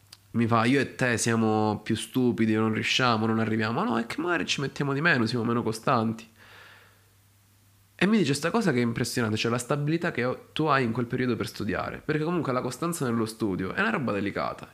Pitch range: 110-130 Hz